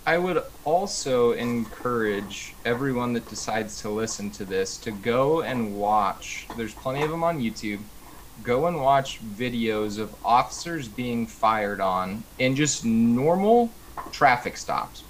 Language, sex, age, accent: English, male, 20-39, American